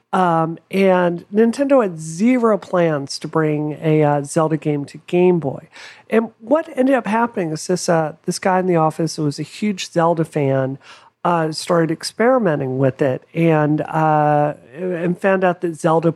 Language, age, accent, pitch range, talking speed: English, 40-59, American, 155-205 Hz, 170 wpm